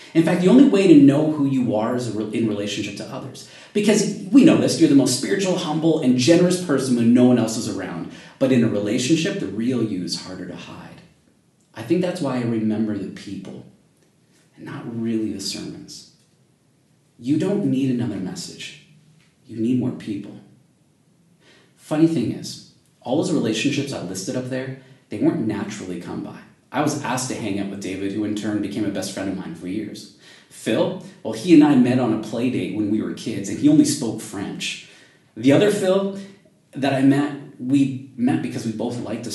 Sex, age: male, 30-49